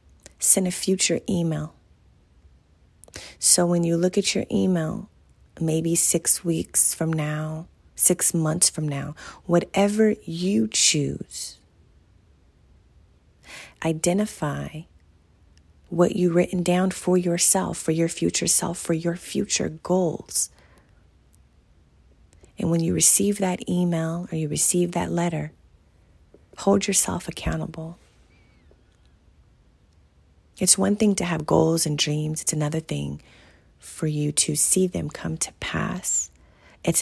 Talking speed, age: 115 wpm, 30-49